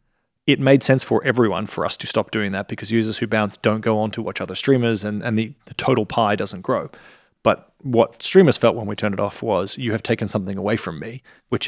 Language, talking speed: English, 245 wpm